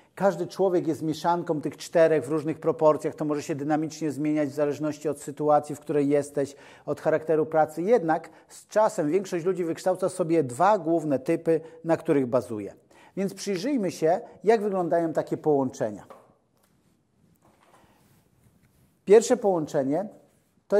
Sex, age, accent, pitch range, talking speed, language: male, 40-59, native, 150-180 Hz, 135 wpm, Polish